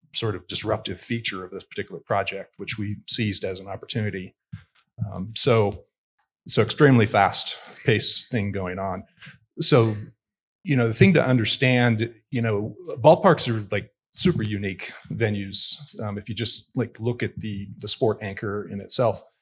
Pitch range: 105-125 Hz